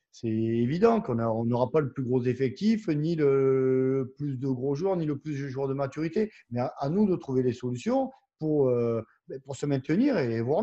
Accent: French